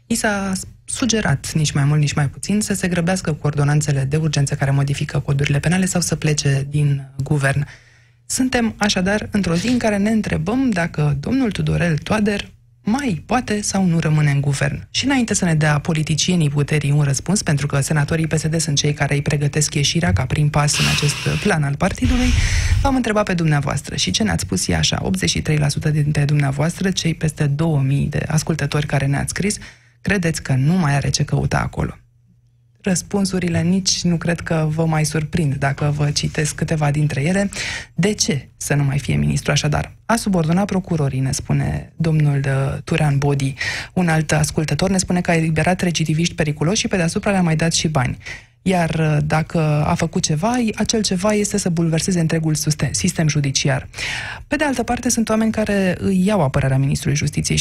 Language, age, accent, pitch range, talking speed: Romanian, 20-39, native, 145-185 Hz, 180 wpm